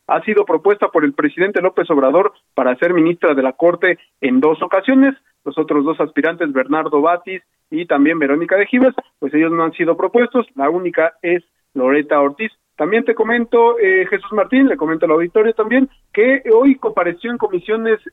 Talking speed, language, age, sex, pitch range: 180 wpm, Spanish, 40-59, male, 155-245 Hz